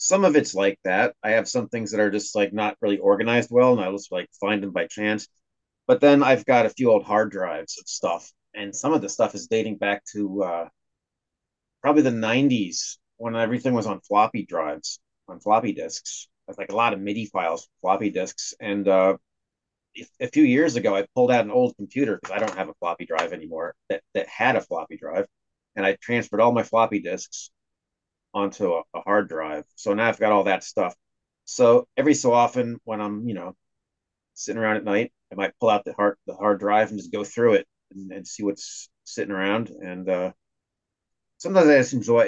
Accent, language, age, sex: American, English, 30-49, male